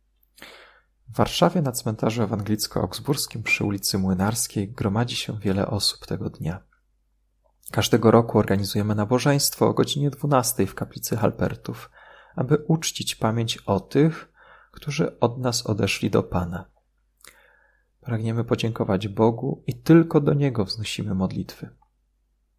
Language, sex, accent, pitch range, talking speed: Polish, male, native, 100-130 Hz, 120 wpm